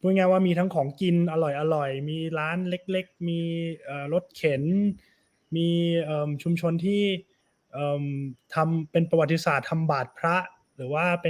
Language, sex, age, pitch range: Thai, male, 20-39, 145-180 Hz